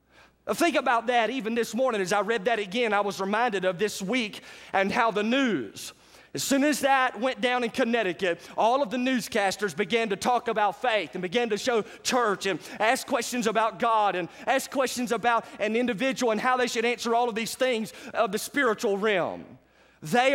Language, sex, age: English, male, 30-49